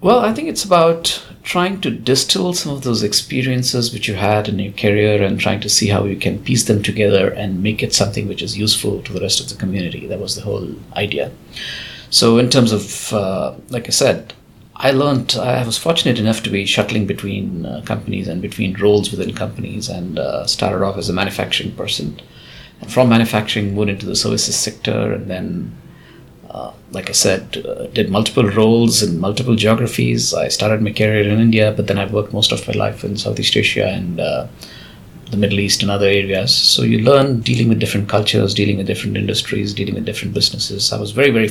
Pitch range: 105-125 Hz